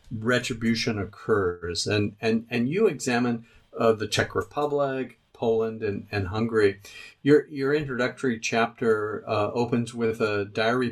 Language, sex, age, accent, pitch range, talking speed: English, male, 50-69, American, 110-130 Hz, 130 wpm